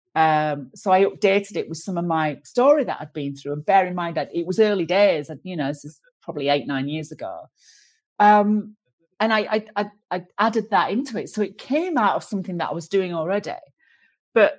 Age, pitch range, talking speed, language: 40-59, 165-220 Hz, 220 wpm, English